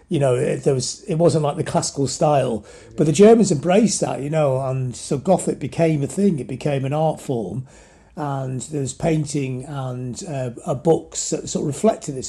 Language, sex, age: English, male, 40-59